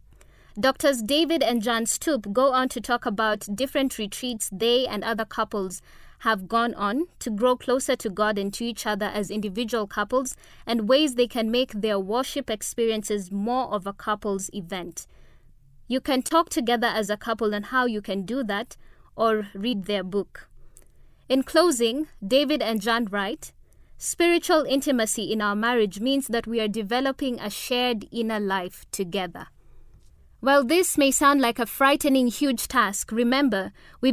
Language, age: English, 20-39